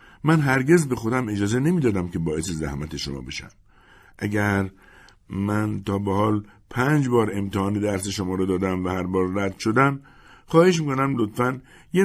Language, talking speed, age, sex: Persian, 170 wpm, 60-79, male